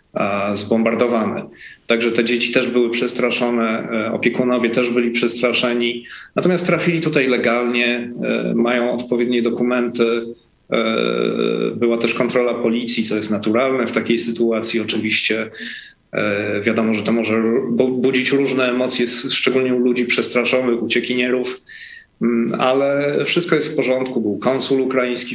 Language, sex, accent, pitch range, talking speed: Polish, male, native, 115-130 Hz, 115 wpm